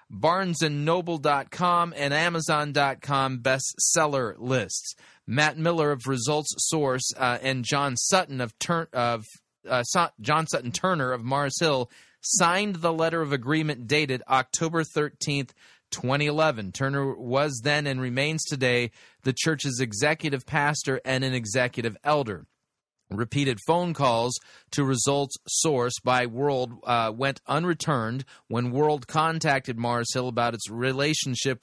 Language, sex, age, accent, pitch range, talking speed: English, male, 30-49, American, 125-160 Hz, 125 wpm